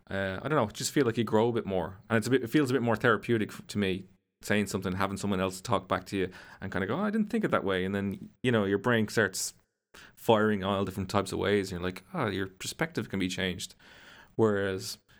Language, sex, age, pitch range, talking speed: English, male, 30-49, 95-110 Hz, 270 wpm